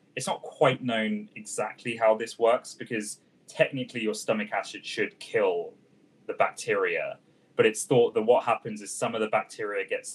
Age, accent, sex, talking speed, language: 20-39, British, male, 170 wpm, English